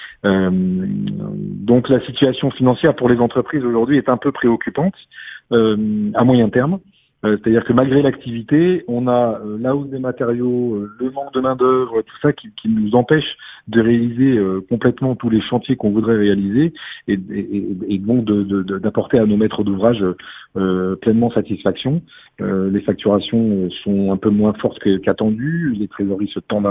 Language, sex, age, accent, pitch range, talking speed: French, male, 40-59, French, 100-130 Hz, 160 wpm